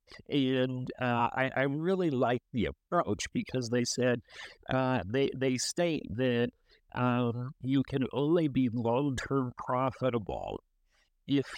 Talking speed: 125 wpm